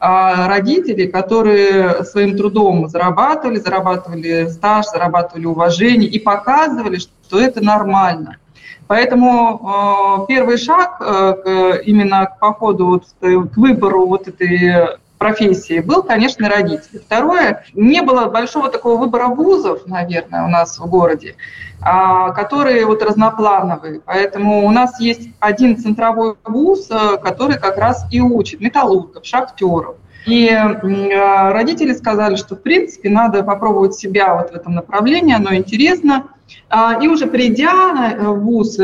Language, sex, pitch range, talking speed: Russian, female, 185-235 Hz, 120 wpm